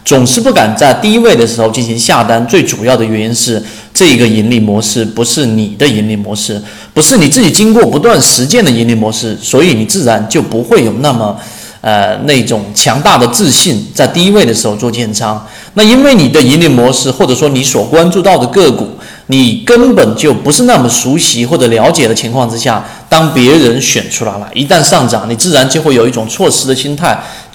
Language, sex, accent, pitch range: Chinese, male, native, 115-150 Hz